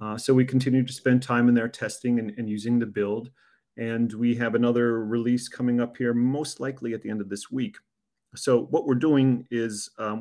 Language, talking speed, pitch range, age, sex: English, 215 wpm, 105-125 Hz, 30-49, male